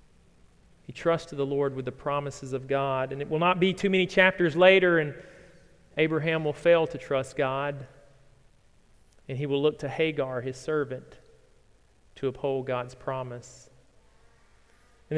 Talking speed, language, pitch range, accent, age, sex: 150 wpm, English, 135-185 Hz, American, 40-59, male